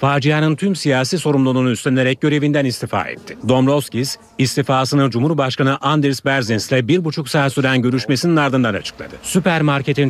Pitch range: 120-145 Hz